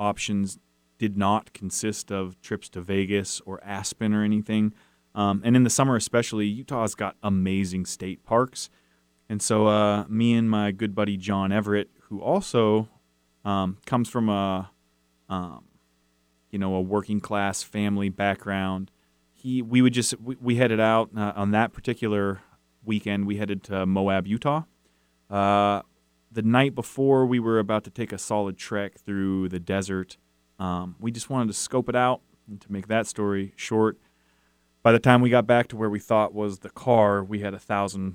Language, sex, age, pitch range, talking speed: English, male, 30-49, 95-110 Hz, 175 wpm